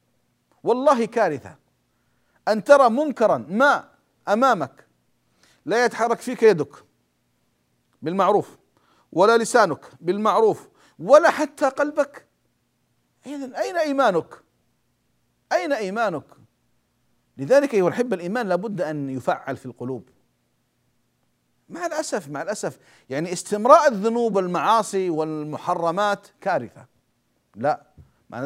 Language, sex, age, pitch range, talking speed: Arabic, male, 50-69, 155-235 Hz, 95 wpm